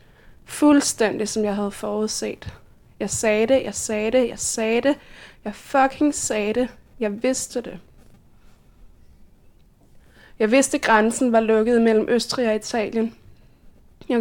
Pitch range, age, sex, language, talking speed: 215-250 Hz, 20-39, female, Danish, 135 wpm